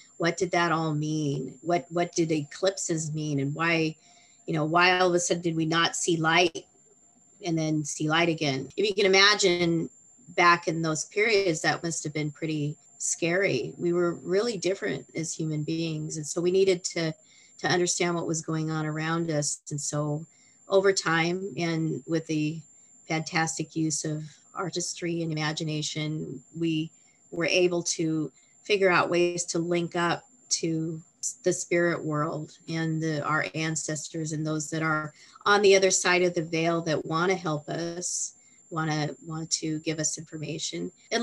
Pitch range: 155-175 Hz